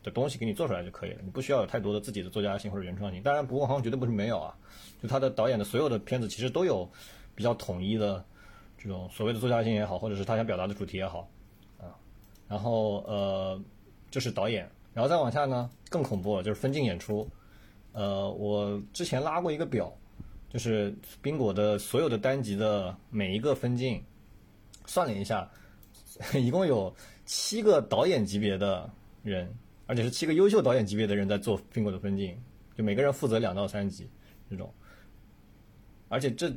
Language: Chinese